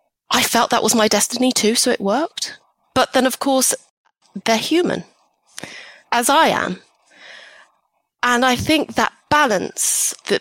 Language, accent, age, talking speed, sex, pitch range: English, British, 30-49, 145 wpm, female, 180-240 Hz